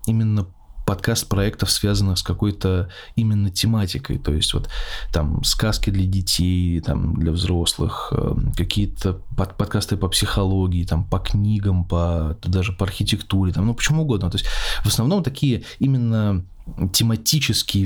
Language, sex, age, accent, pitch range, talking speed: Russian, male, 20-39, native, 95-115 Hz, 135 wpm